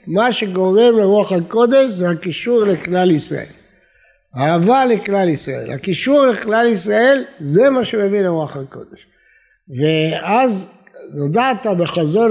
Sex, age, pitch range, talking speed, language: male, 60-79, 165-225 Hz, 105 wpm, Hebrew